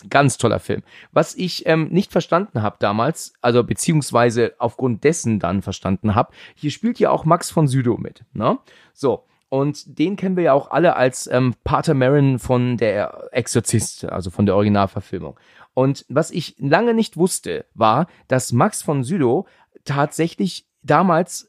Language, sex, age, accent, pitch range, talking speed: German, male, 40-59, German, 125-180 Hz, 160 wpm